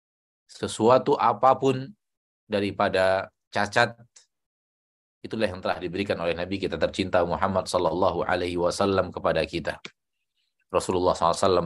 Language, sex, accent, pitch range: Indonesian, male, native, 85-100 Hz